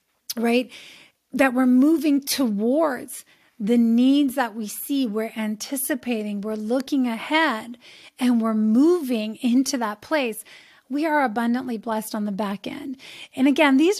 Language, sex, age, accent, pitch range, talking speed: English, female, 30-49, American, 235-290 Hz, 135 wpm